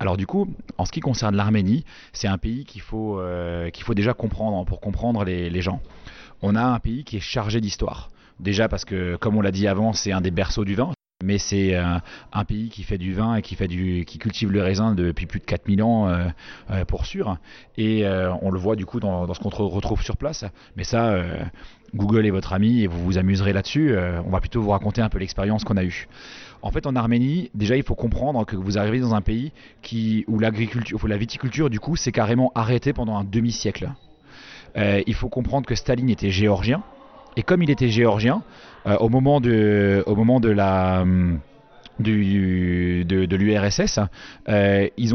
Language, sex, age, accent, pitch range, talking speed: French, male, 30-49, French, 100-120 Hz, 220 wpm